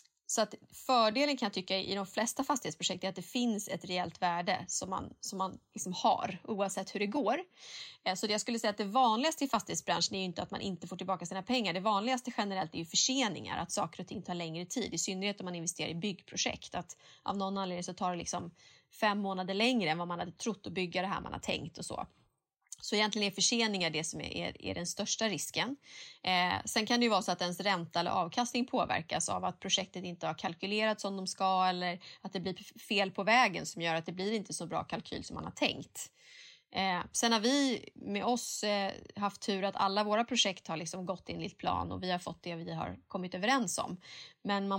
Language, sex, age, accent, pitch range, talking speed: Swedish, female, 30-49, native, 180-220 Hz, 230 wpm